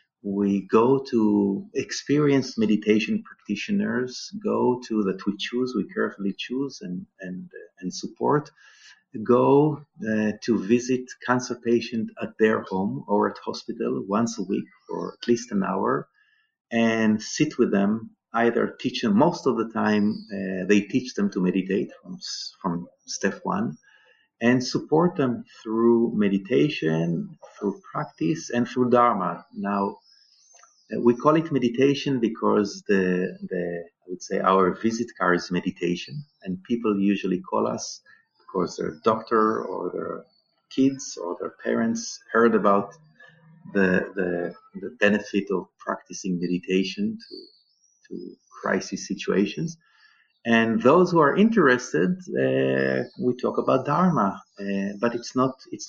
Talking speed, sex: 135 wpm, male